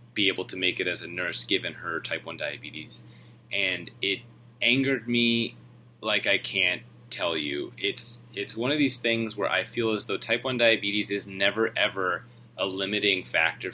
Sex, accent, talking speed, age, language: male, American, 185 wpm, 30-49, English